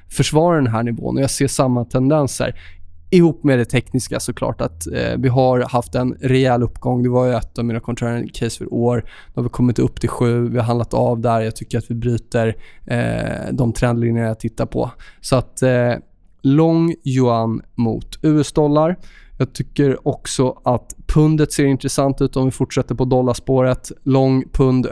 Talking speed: 180 wpm